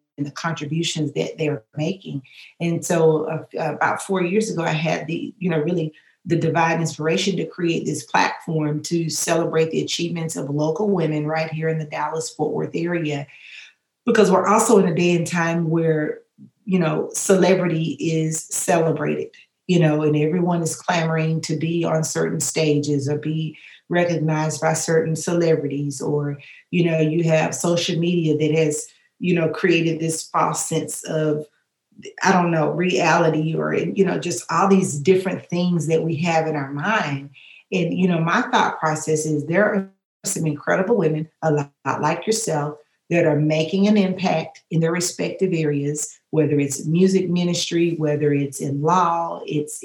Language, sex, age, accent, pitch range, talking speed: English, female, 40-59, American, 155-180 Hz, 165 wpm